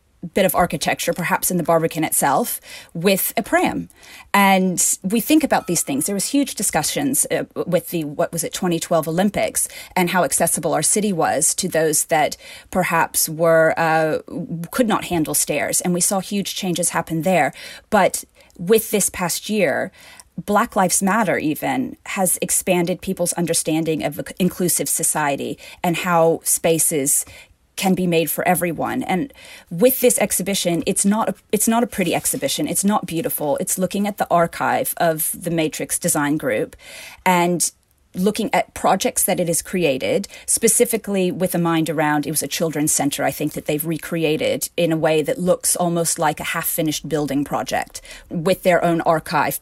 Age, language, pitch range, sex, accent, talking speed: 30-49, English, 165-200 Hz, female, American, 170 wpm